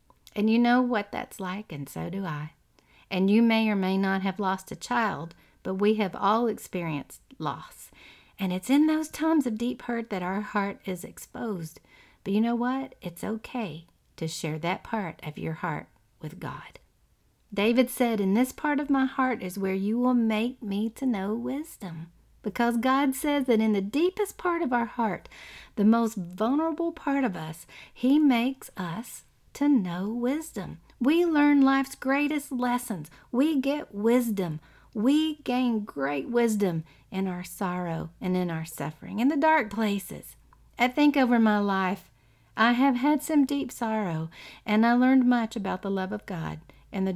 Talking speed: 175 wpm